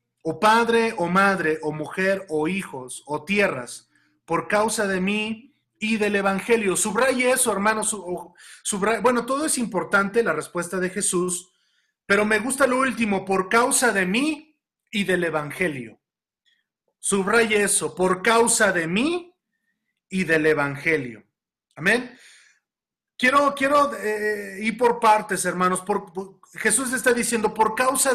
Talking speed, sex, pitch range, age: 130 wpm, male, 180-220 Hz, 40-59